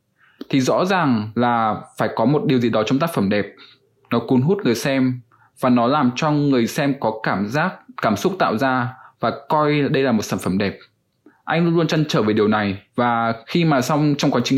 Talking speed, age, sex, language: 225 wpm, 20-39, male, English